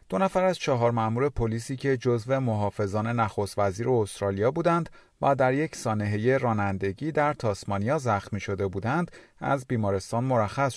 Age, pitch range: 30-49, 105-135 Hz